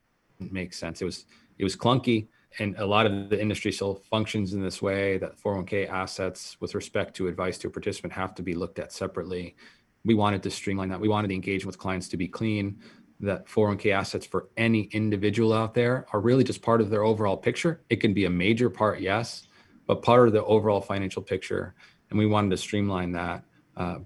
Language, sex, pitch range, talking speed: English, male, 90-105 Hz, 210 wpm